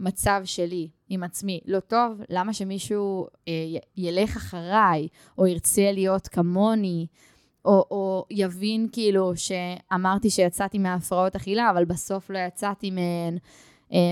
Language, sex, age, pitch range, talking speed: Hebrew, female, 10-29, 180-205 Hz, 130 wpm